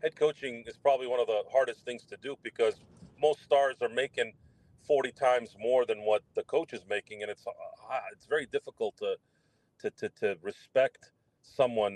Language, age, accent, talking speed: English, 40-59, American, 180 wpm